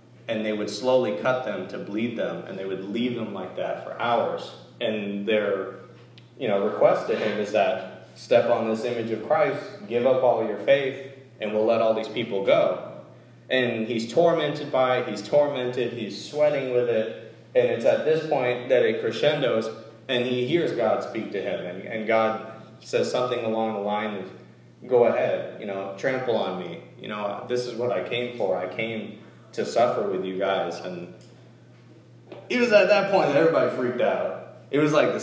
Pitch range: 110-140 Hz